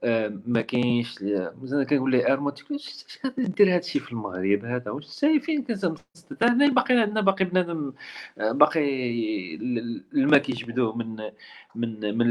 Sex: male